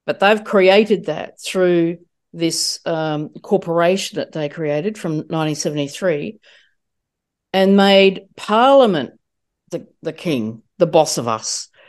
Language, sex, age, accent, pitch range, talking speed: English, female, 50-69, Australian, 165-200 Hz, 115 wpm